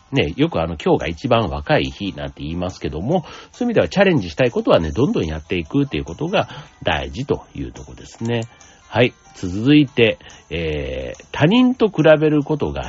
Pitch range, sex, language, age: 85-145 Hz, male, Japanese, 60-79